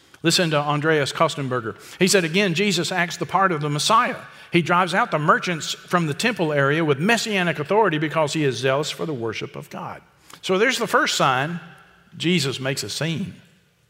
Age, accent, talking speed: 50-69, American, 190 wpm